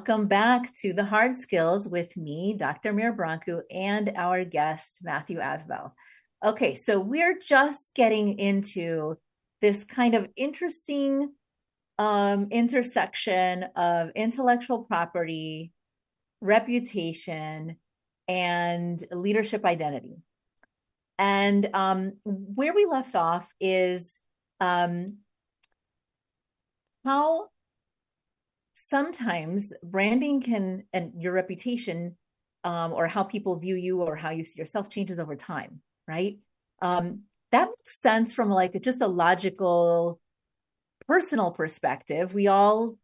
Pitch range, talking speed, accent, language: 175-220 Hz, 110 wpm, American, English